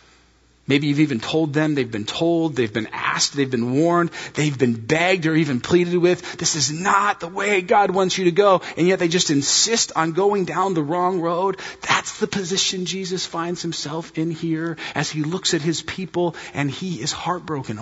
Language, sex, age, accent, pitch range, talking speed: English, male, 30-49, American, 135-180 Hz, 200 wpm